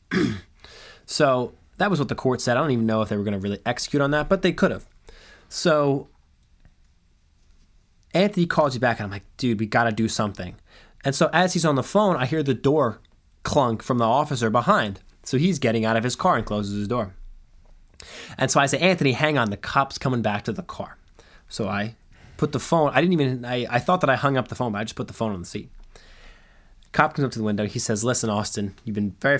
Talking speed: 240 wpm